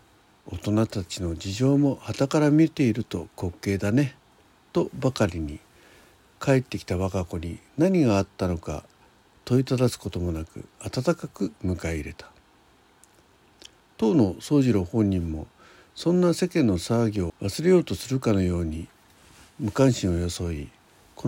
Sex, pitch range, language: male, 85-135 Hz, Japanese